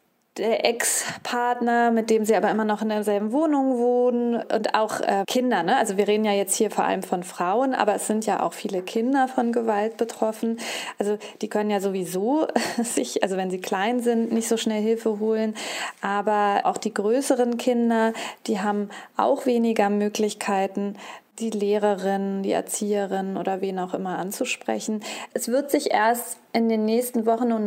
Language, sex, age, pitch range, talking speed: German, female, 30-49, 205-245 Hz, 175 wpm